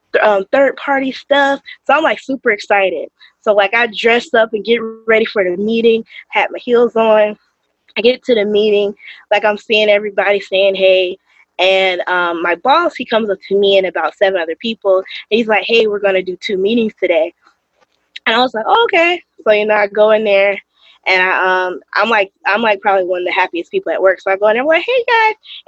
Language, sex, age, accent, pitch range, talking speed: English, female, 20-39, American, 195-275 Hz, 215 wpm